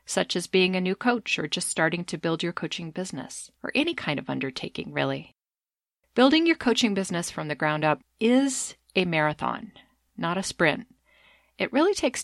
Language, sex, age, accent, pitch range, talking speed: English, female, 40-59, American, 160-230 Hz, 180 wpm